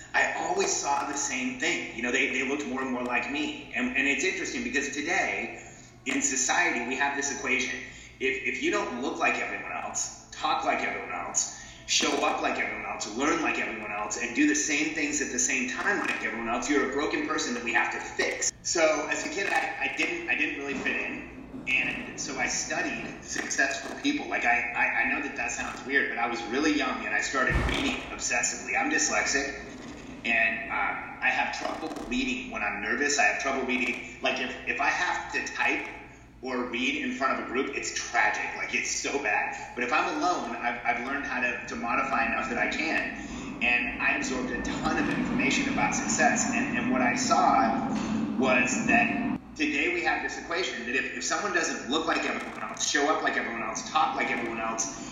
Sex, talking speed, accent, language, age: male, 215 wpm, American, English, 30-49